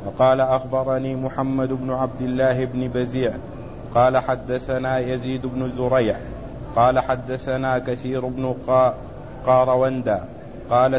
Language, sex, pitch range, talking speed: Arabic, male, 125-130 Hz, 105 wpm